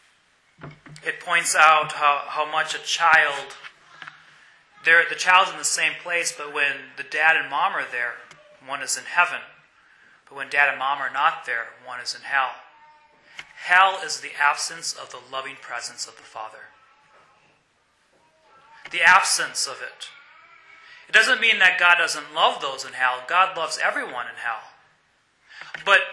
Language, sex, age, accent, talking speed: English, male, 30-49, American, 160 wpm